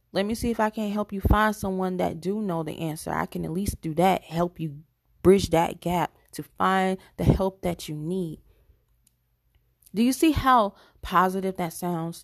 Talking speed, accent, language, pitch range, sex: 195 wpm, American, English, 180-235 Hz, female